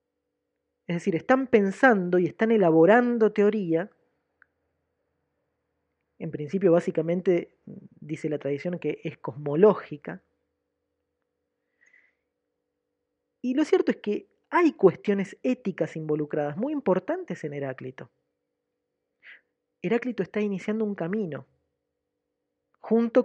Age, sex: 20-39, female